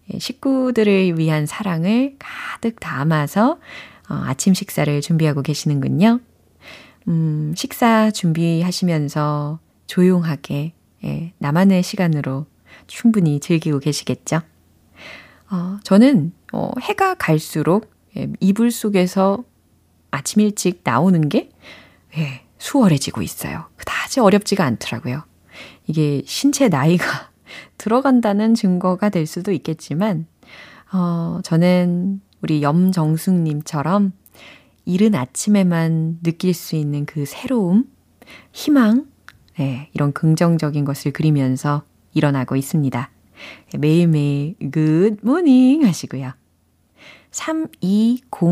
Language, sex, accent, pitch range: Korean, female, native, 155-210 Hz